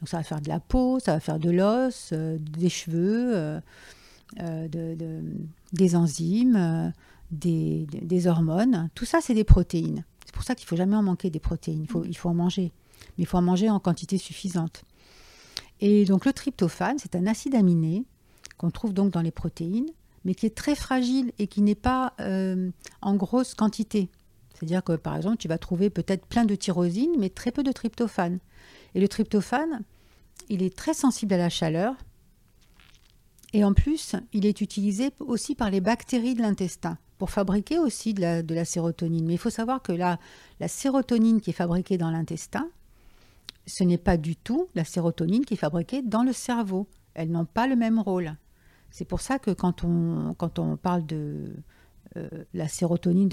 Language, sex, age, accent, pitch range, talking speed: French, female, 50-69, French, 170-220 Hz, 190 wpm